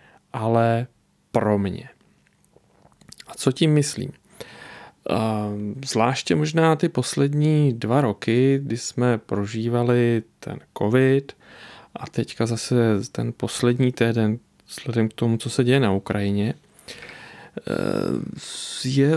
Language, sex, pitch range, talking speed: Czech, male, 115-135 Hz, 105 wpm